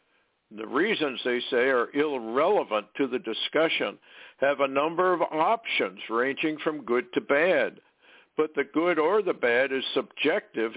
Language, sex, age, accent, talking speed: English, male, 60-79, American, 150 wpm